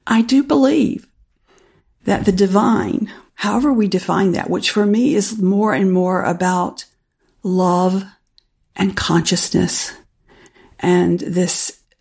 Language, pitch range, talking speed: English, 180-220 Hz, 115 wpm